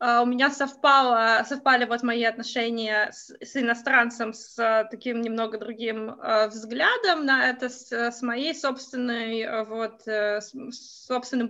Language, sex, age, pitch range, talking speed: English, female, 20-39, 230-315 Hz, 115 wpm